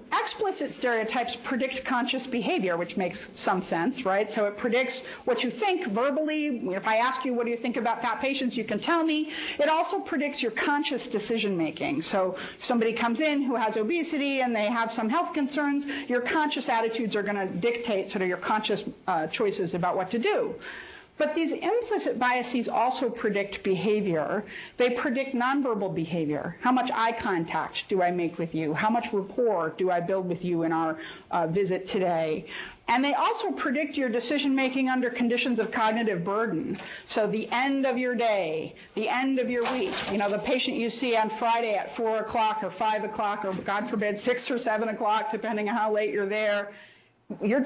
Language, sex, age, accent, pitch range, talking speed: English, female, 40-59, American, 205-265 Hz, 195 wpm